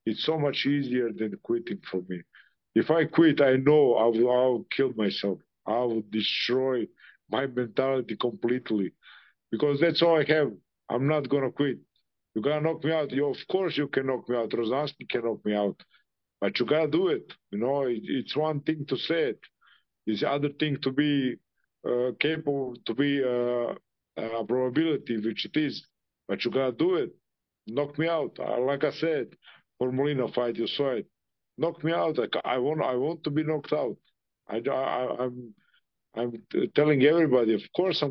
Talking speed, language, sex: 190 wpm, English, male